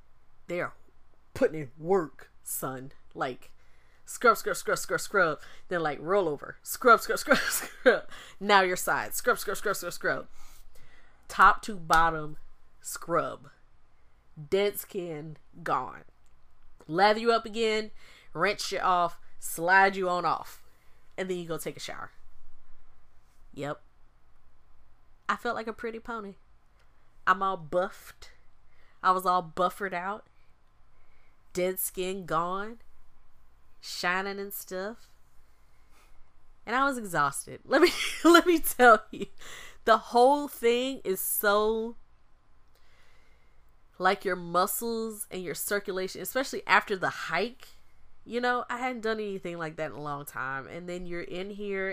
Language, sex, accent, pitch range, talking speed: English, female, American, 165-225 Hz, 135 wpm